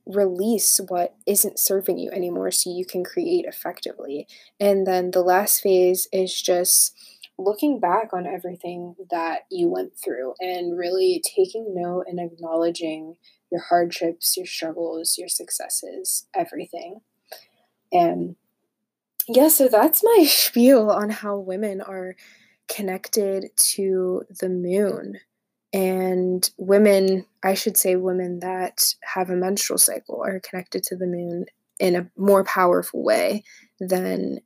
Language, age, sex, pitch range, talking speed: English, 20-39, female, 185-225 Hz, 130 wpm